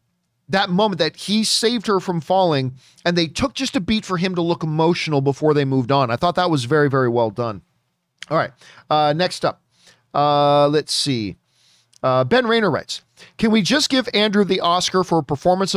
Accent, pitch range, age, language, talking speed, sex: American, 150-210 Hz, 40-59, English, 200 wpm, male